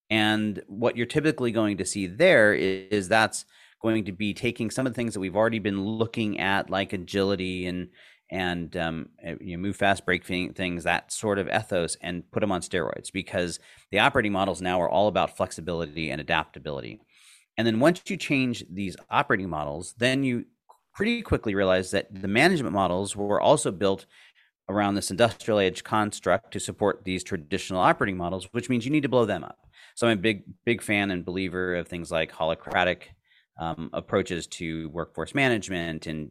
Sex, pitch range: male, 90-110 Hz